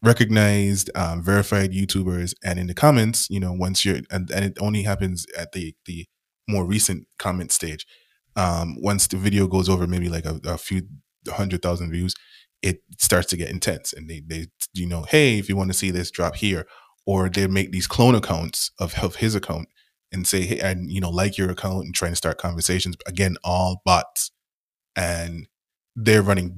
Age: 20-39